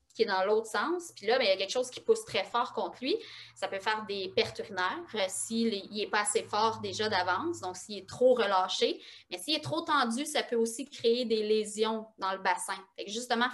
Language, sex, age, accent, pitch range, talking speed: French, female, 20-39, Canadian, 210-265 Hz, 240 wpm